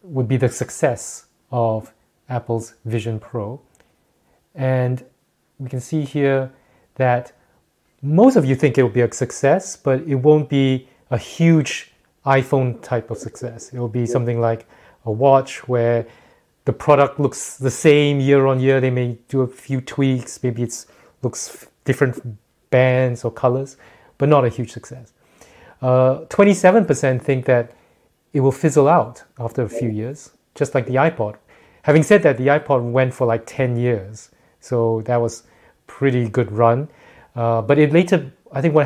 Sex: male